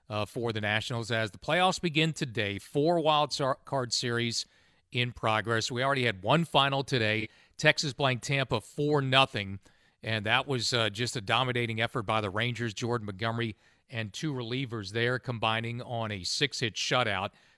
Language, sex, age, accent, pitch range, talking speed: English, male, 40-59, American, 110-145 Hz, 165 wpm